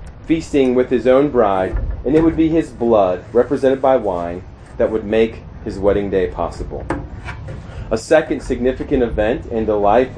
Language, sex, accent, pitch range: English, male, American, 115-160 Hz